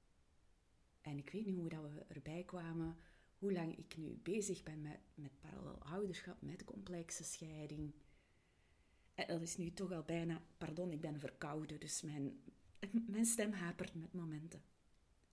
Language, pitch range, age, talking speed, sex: Dutch, 150-185 Hz, 40-59, 155 wpm, female